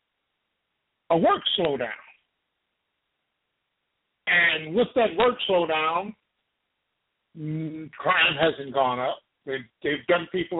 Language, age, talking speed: English, 60-79, 90 wpm